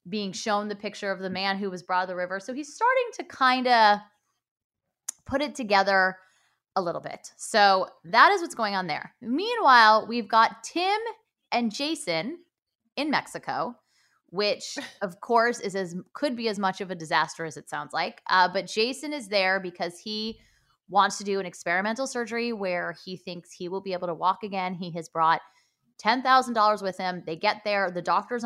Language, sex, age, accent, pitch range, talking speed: English, female, 20-39, American, 180-235 Hz, 190 wpm